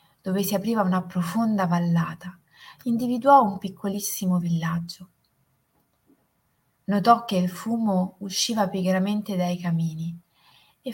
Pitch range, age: 170-210 Hz, 20-39